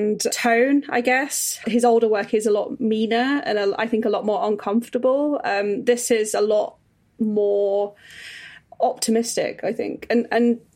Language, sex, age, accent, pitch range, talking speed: English, female, 20-39, British, 210-235 Hz, 155 wpm